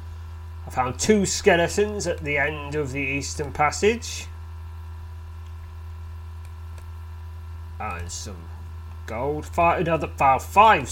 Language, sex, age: English, male, 30-49